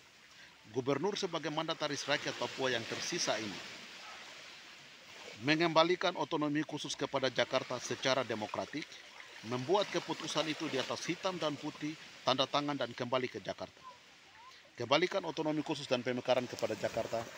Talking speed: 125 wpm